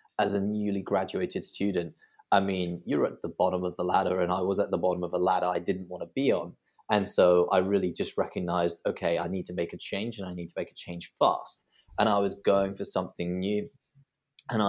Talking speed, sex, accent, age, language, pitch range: 235 wpm, male, British, 20-39, English, 85-100 Hz